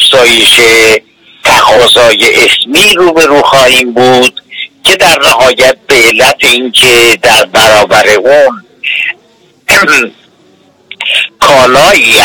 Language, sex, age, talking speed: Persian, male, 60-79, 90 wpm